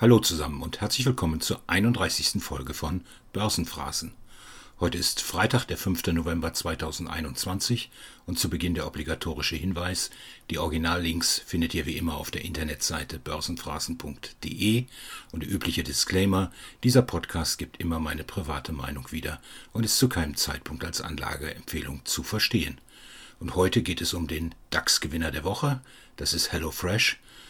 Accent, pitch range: German, 80-110 Hz